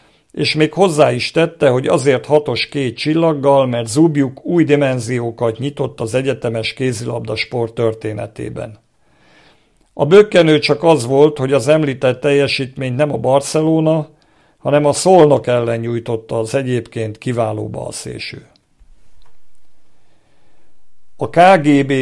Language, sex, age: Hungarian, male, 50-69